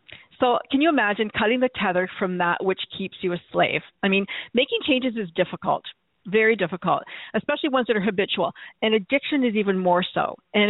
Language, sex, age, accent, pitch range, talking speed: English, female, 50-69, American, 195-250 Hz, 190 wpm